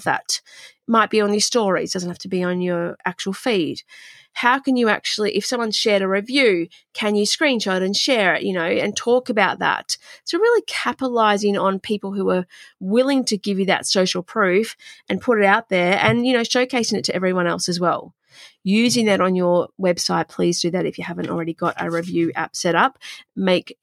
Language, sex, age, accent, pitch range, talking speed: English, female, 30-49, Australian, 180-230 Hz, 210 wpm